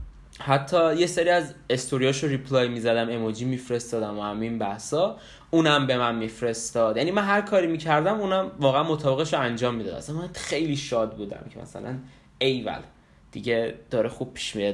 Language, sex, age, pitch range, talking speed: Persian, male, 20-39, 115-150 Hz, 155 wpm